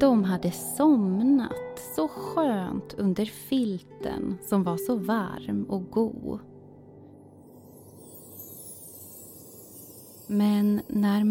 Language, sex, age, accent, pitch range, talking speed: Swedish, female, 20-39, native, 195-285 Hz, 80 wpm